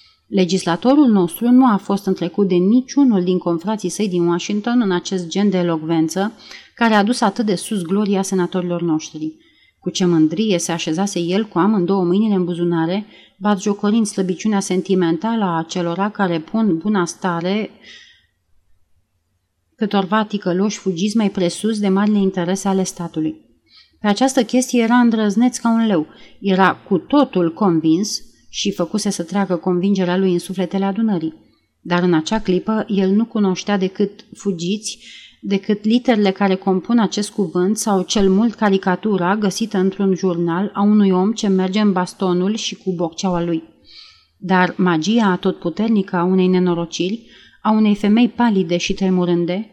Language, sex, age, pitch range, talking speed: Romanian, female, 30-49, 175-210 Hz, 145 wpm